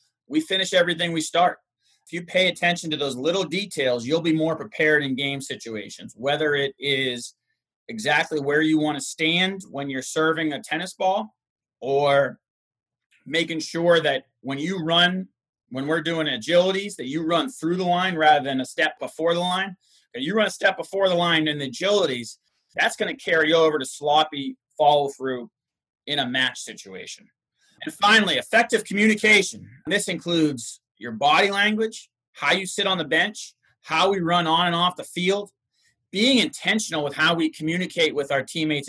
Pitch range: 140-180 Hz